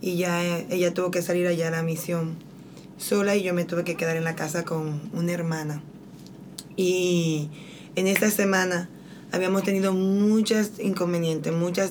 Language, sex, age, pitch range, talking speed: English, female, 20-39, 175-205 Hz, 160 wpm